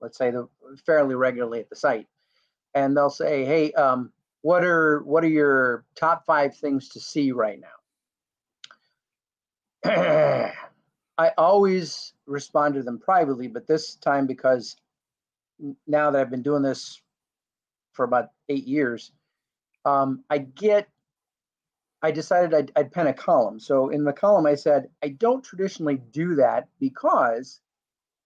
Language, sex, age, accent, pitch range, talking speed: English, male, 40-59, American, 135-170 Hz, 140 wpm